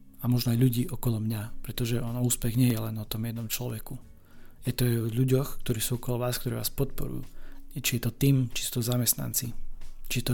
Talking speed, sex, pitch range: 220 wpm, male, 115-130 Hz